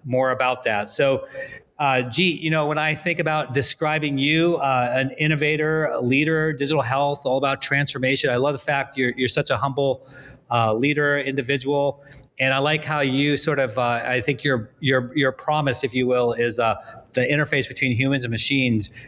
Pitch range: 120-145 Hz